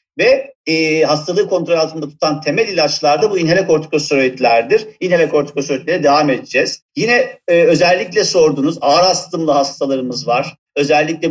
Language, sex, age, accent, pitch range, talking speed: Turkish, male, 50-69, native, 145-175 Hz, 125 wpm